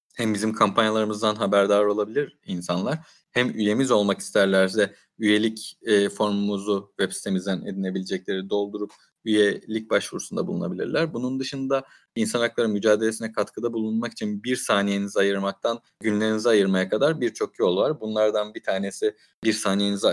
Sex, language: male, Turkish